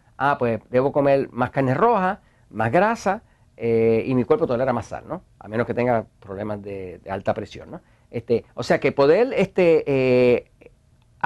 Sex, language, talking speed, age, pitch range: male, Spanish, 180 wpm, 50-69, 120-175 Hz